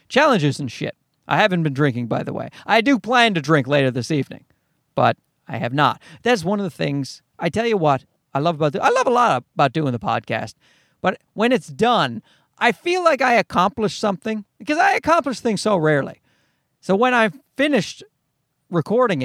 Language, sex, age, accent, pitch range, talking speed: English, male, 40-59, American, 155-235 Hz, 200 wpm